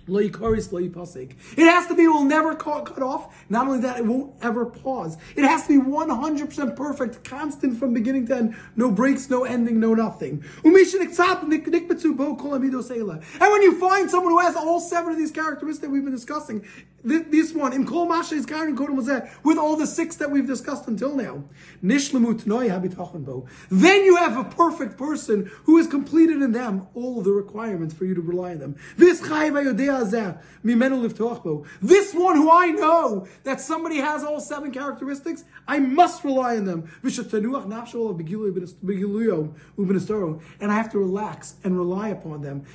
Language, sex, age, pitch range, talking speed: English, male, 30-49, 190-285 Hz, 155 wpm